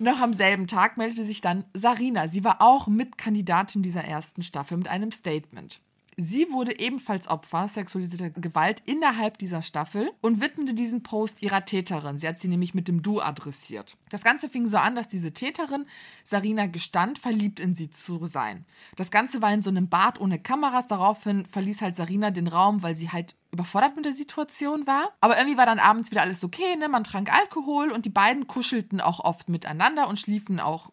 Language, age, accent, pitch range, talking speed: German, 20-39, German, 175-235 Hz, 195 wpm